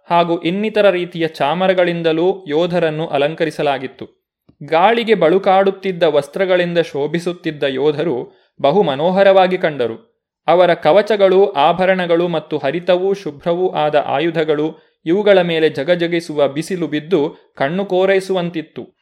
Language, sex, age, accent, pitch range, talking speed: Kannada, male, 30-49, native, 150-190 Hz, 90 wpm